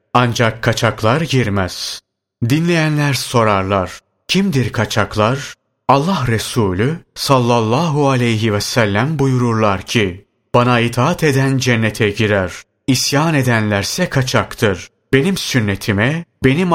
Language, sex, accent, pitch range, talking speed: Turkish, male, native, 110-135 Hz, 95 wpm